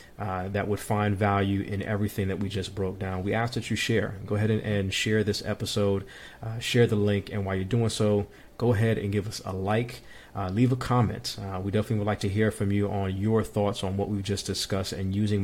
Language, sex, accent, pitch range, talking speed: English, male, American, 95-110 Hz, 245 wpm